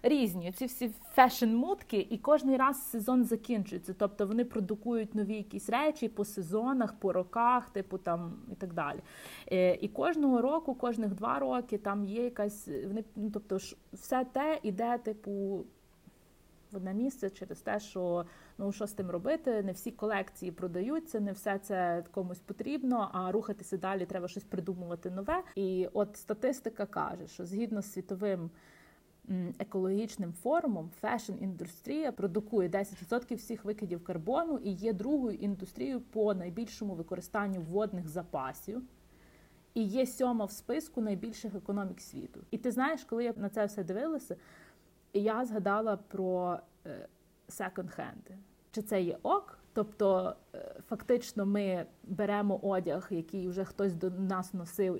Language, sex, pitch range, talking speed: Ukrainian, female, 185-230 Hz, 140 wpm